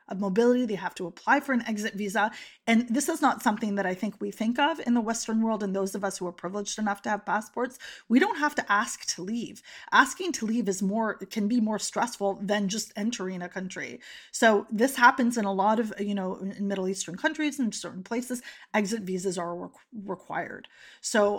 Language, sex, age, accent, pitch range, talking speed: English, female, 30-49, American, 195-220 Hz, 220 wpm